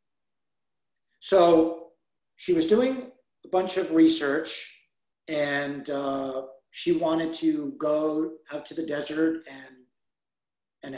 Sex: male